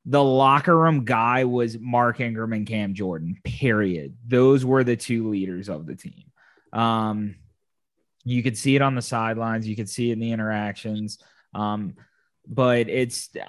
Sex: male